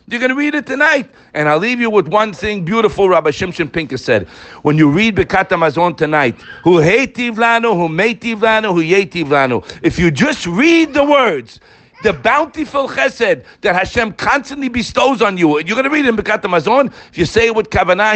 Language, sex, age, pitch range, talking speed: English, male, 60-79, 150-240 Hz, 170 wpm